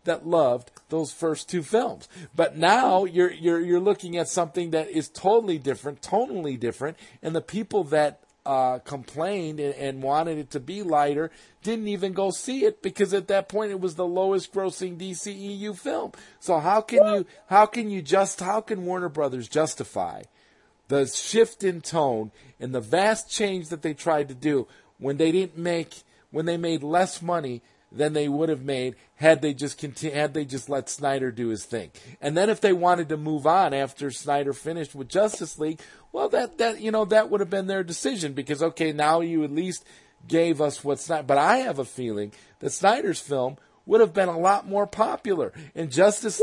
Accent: American